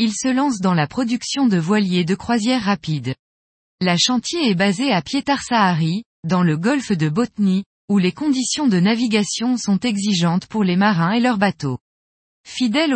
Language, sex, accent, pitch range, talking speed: French, female, French, 175-245 Hz, 165 wpm